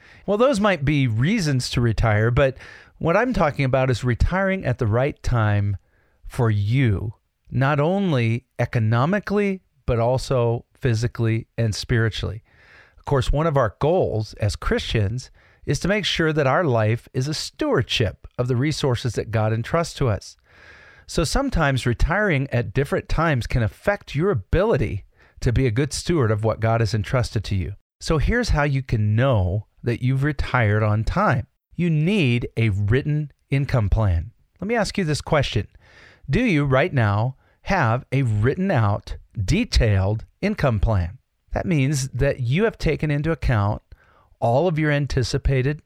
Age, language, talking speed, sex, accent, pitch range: 40-59, English, 160 wpm, male, American, 110-150 Hz